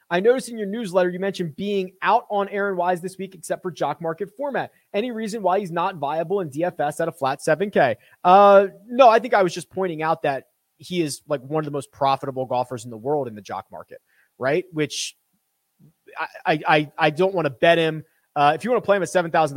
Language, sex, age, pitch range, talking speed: English, male, 30-49, 140-180 Hz, 240 wpm